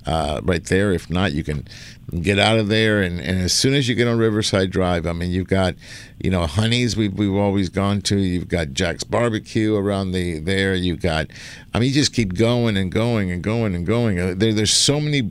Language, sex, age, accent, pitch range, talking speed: English, male, 50-69, American, 95-120 Hz, 225 wpm